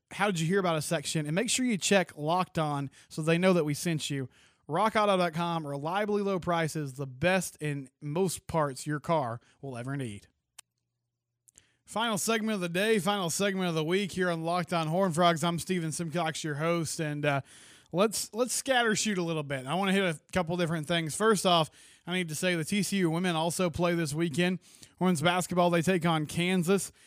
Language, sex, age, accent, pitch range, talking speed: English, male, 20-39, American, 155-190 Hz, 205 wpm